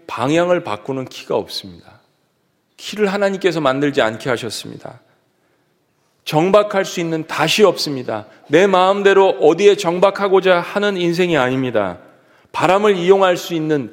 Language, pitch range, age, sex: Korean, 110-180 Hz, 40-59, male